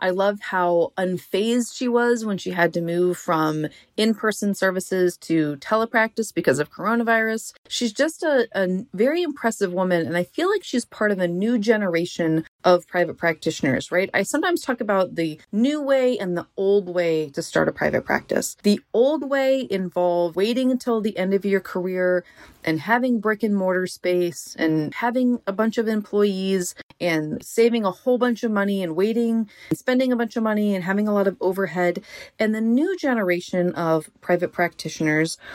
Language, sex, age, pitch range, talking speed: English, female, 30-49, 175-230 Hz, 180 wpm